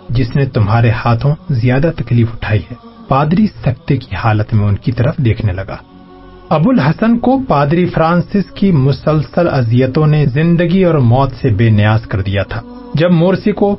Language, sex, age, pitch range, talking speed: Urdu, male, 40-59, 120-170 Hz, 165 wpm